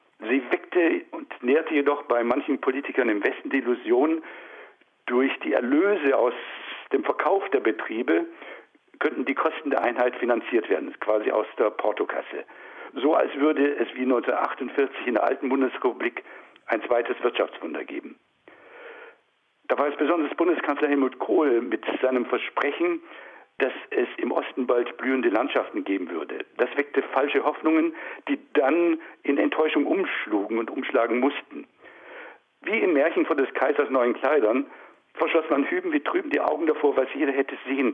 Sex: male